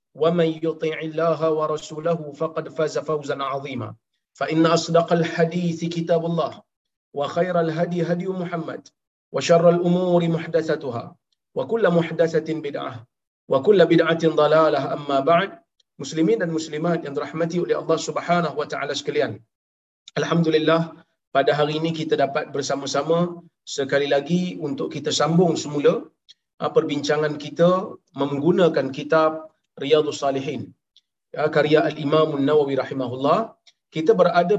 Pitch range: 150-170 Hz